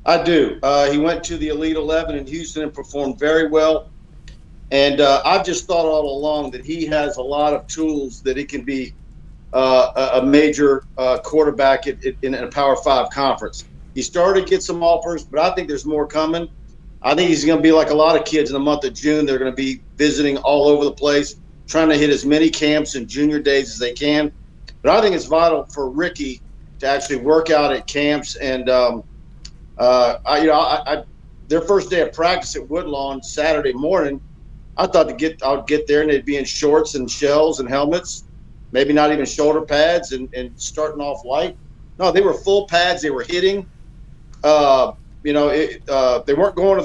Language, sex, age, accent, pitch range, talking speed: English, male, 50-69, American, 135-160 Hz, 215 wpm